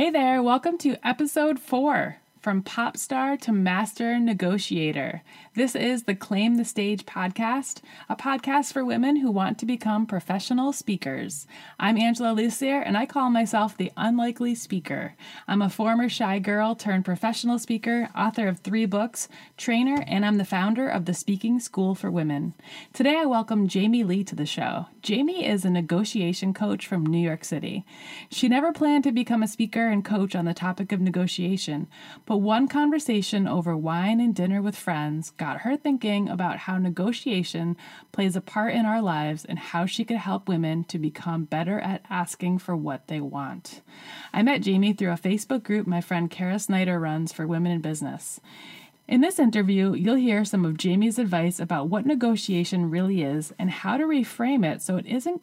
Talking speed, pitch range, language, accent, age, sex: 180 wpm, 180-235 Hz, English, American, 20-39, female